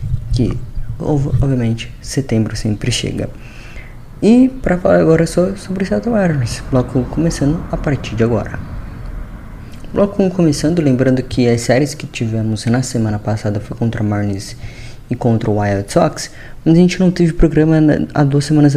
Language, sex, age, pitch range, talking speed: Portuguese, female, 20-39, 115-140 Hz, 155 wpm